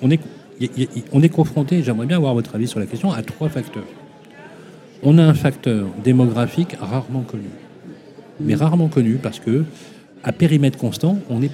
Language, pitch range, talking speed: French, 110-155 Hz, 160 wpm